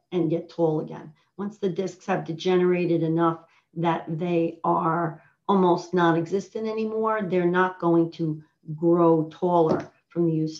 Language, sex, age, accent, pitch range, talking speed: English, female, 40-59, American, 165-190 Hz, 140 wpm